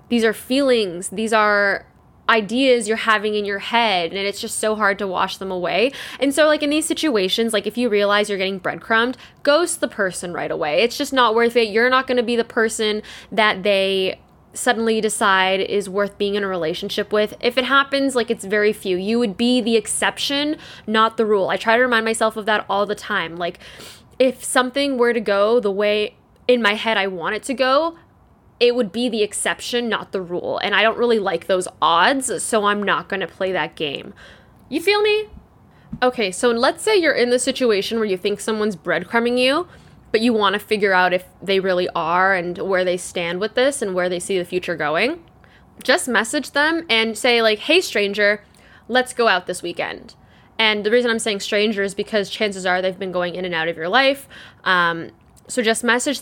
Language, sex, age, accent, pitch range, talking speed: English, female, 10-29, American, 195-245 Hz, 215 wpm